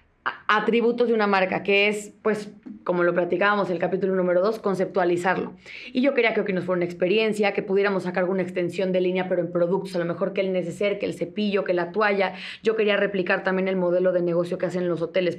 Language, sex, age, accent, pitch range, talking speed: Spanish, female, 20-39, Mexican, 185-215 Hz, 230 wpm